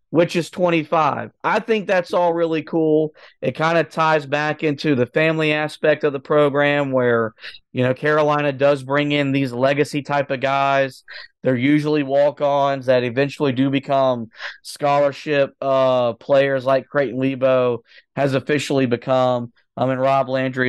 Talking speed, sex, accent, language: 155 wpm, male, American, English